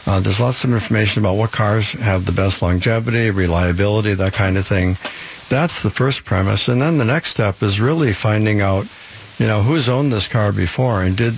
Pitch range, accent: 100-120 Hz, American